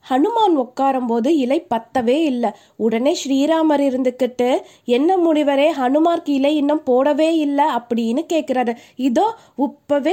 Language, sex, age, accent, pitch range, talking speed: Tamil, female, 20-39, native, 245-305 Hz, 120 wpm